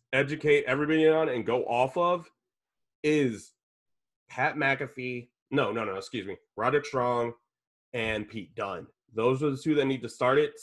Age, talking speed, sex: 20-39, 165 wpm, male